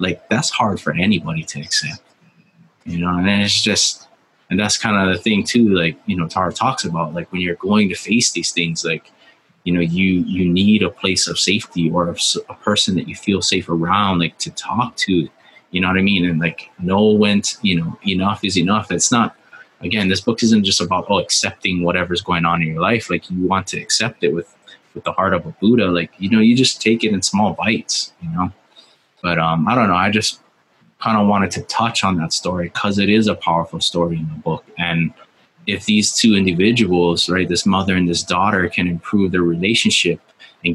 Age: 20-39